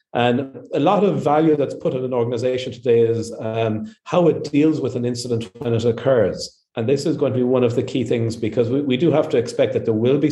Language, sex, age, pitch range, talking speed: English, male, 40-59, 120-160 Hz, 255 wpm